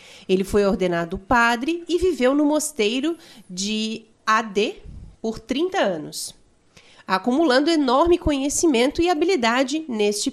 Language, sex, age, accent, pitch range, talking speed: Portuguese, female, 40-59, Brazilian, 215-320 Hz, 110 wpm